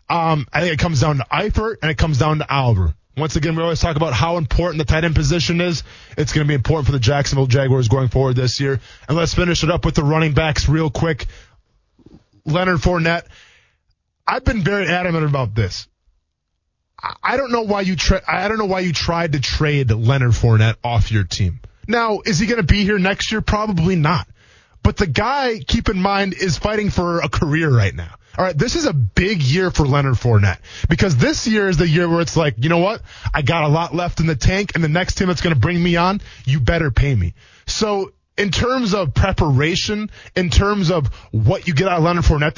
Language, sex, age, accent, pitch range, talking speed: English, male, 20-39, American, 130-190 Hz, 225 wpm